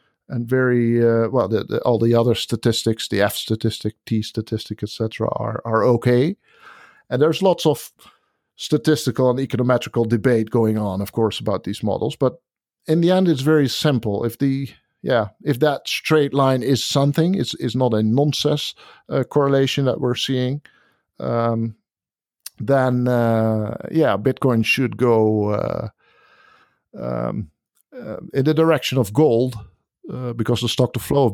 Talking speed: 155 wpm